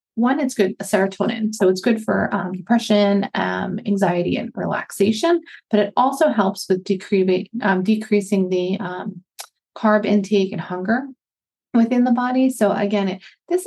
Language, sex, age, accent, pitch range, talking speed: English, female, 30-49, American, 185-220 Hz, 140 wpm